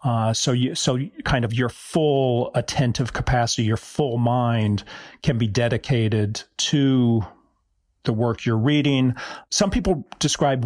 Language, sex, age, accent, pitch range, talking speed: English, male, 40-59, American, 115-145 Hz, 135 wpm